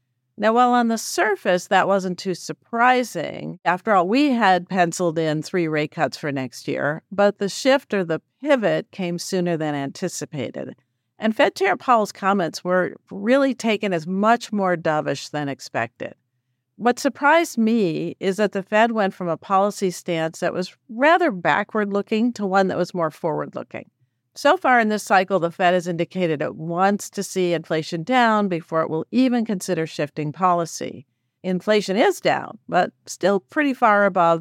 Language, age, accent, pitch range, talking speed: English, 50-69, American, 160-220 Hz, 170 wpm